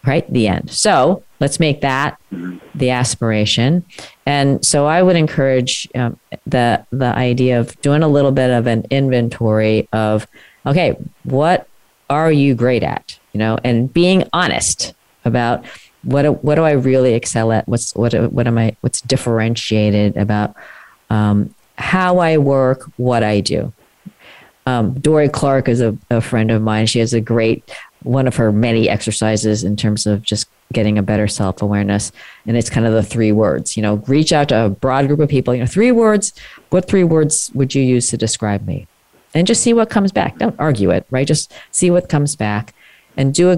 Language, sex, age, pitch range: English, female, 40-59, 110-145 Hz